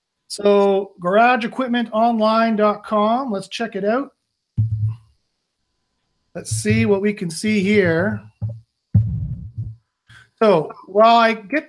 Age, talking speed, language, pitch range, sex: 40-59, 85 wpm, English, 175-220 Hz, male